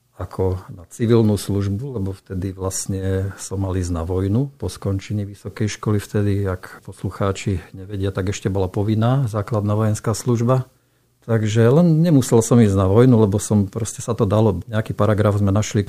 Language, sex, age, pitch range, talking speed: Slovak, male, 50-69, 95-115 Hz, 165 wpm